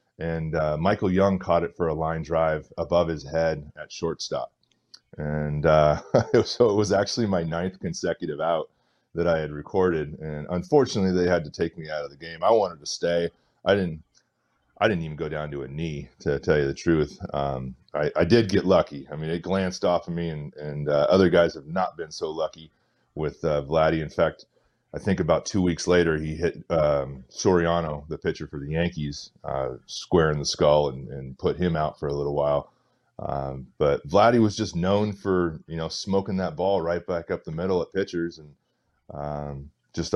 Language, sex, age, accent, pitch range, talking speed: English, male, 30-49, American, 75-95 Hz, 205 wpm